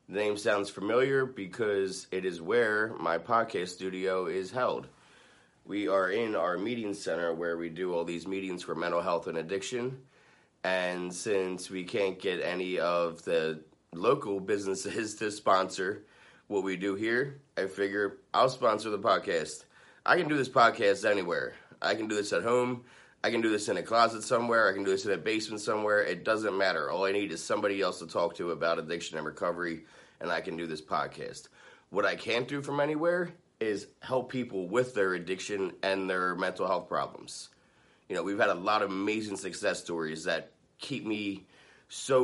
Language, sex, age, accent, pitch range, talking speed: English, male, 30-49, American, 90-120 Hz, 190 wpm